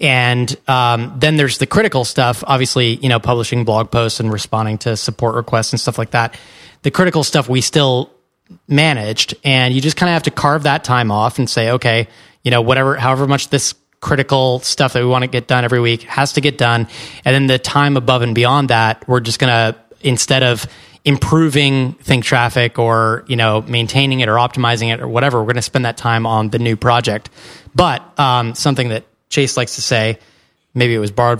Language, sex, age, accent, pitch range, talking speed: English, male, 20-39, American, 115-135 Hz, 210 wpm